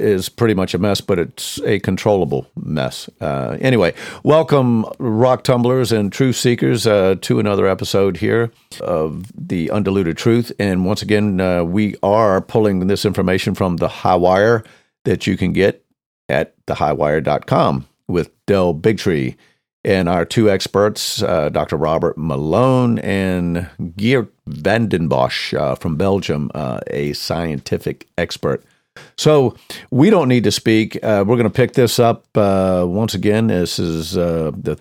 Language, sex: English, male